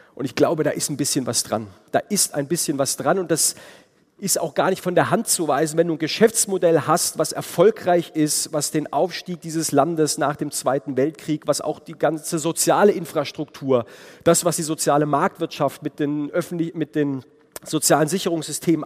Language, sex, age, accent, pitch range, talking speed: German, male, 40-59, German, 140-165 Hz, 190 wpm